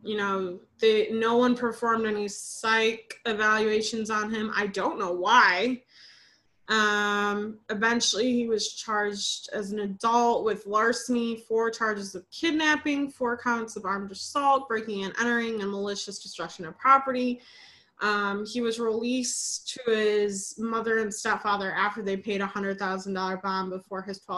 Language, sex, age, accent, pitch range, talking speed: English, female, 20-39, American, 195-235 Hz, 145 wpm